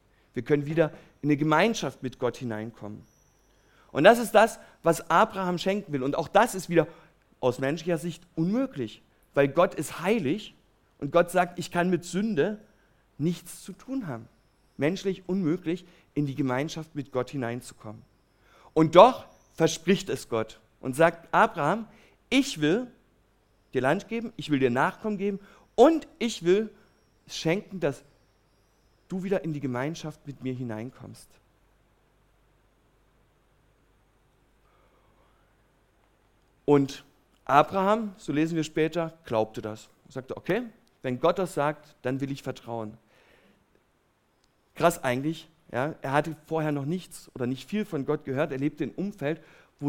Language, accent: German, German